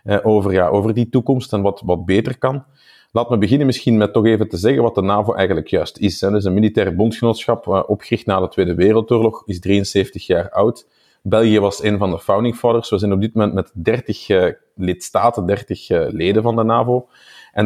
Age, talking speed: 40-59, 205 wpm